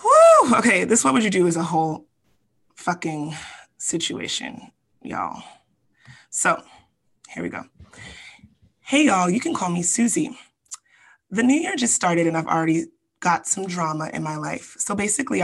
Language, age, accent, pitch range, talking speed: English, 20-39, American, 165-205 Hz, 150 wpm